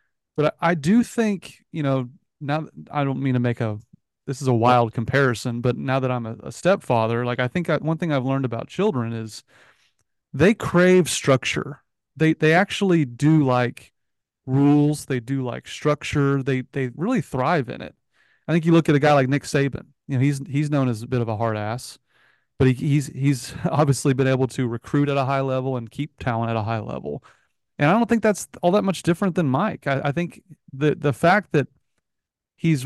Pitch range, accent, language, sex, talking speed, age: 130-160 Hz, American, English, male, 215 wpm, 30-49